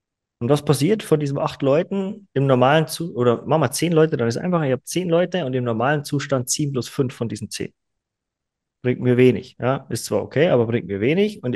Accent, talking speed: German, 235 wpm